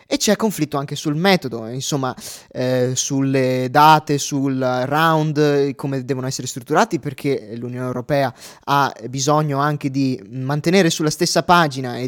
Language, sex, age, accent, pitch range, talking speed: Italian, male, 20-39, native, 135-165 Hz, 140 wpm